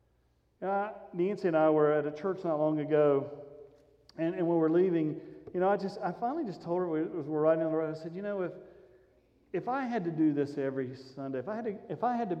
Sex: male